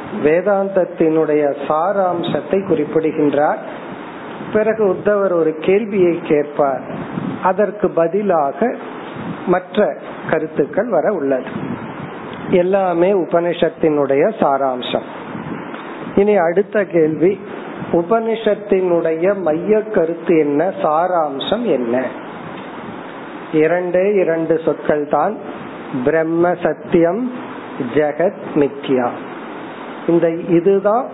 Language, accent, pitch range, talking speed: Tamil, native, 160-200 Hz, 65 wpm